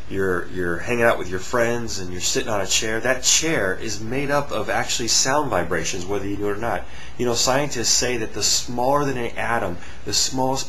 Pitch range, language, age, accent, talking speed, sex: 100-135 Hz, English, 30-49, American, 225 wpm, male